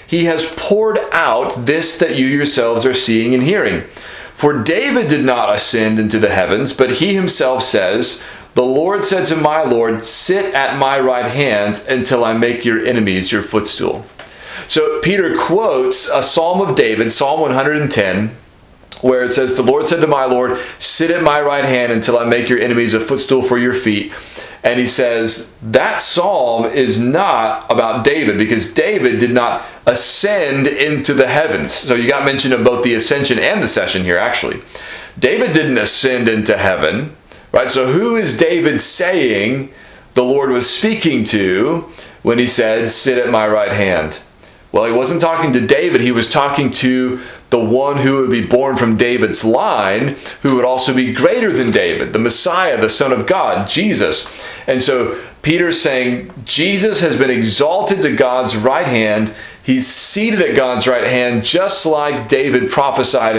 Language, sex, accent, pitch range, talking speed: English, male, American, 115-150 Hz, 175 wpm